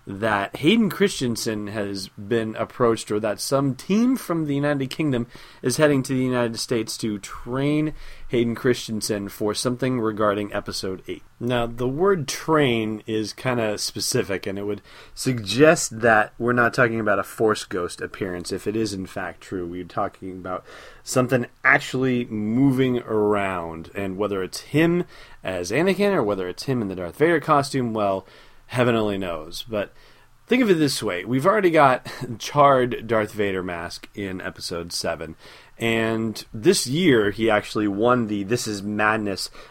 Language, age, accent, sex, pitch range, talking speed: English, 30-49, American, male, 95-125 Hz, 165 wpm